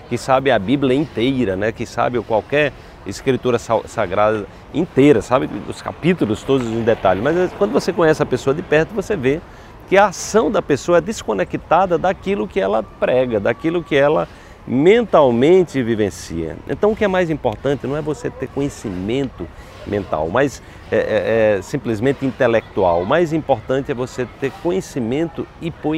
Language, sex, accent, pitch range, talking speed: Portuguese, male, Brazilian, 120-175 Hz, 155 wpm